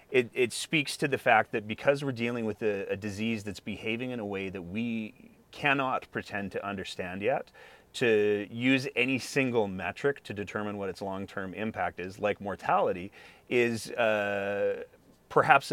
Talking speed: 165 wpm